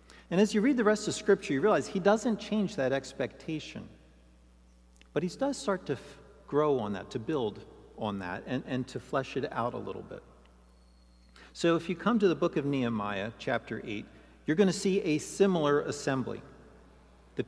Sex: male